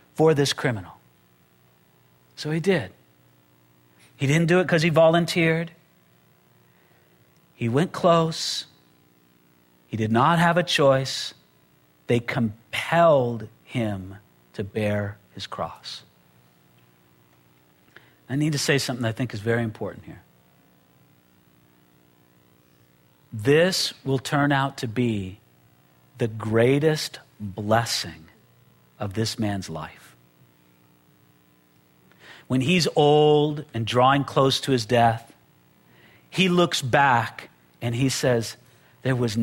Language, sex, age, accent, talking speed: English, male, 50-69, American, 105 wpm